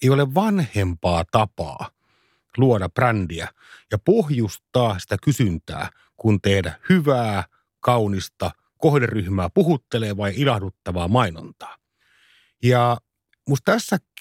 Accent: native